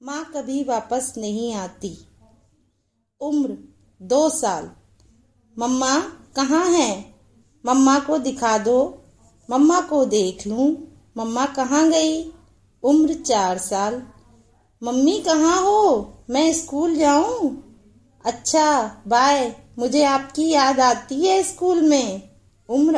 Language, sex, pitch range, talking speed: English, female, 225-310 Hz, 105 wpm